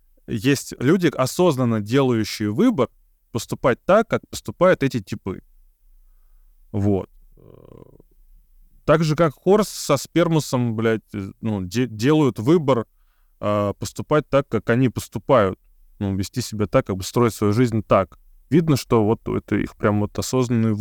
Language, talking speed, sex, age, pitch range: Russian, 135 wpm, male, 20-39, 105-155 Hz